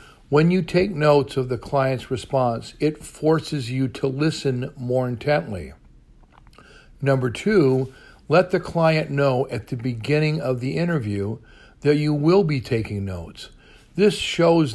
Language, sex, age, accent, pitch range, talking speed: English, male, 50-69, American, 120-150 Hz, 140 wpm